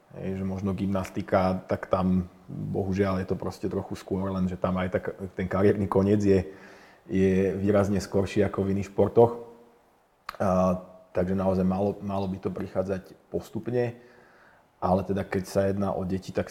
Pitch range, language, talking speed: 95-100 Hz, Slovak, 160 wpm